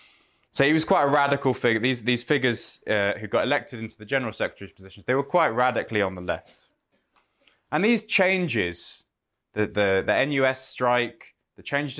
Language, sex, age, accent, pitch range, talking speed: English, male, 20-39, British, 105-140 Hz, 180 wpm